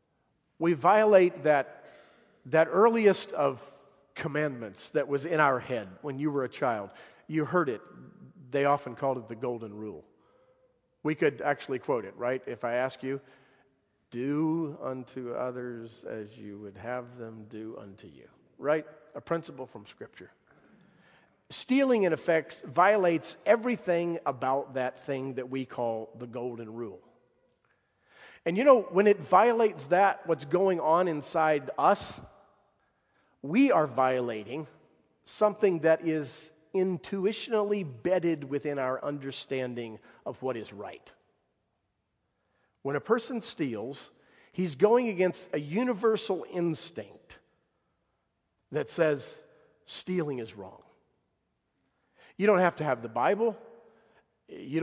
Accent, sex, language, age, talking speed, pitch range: American, male, English, 50-69, 130 wpm, 130-185 Hz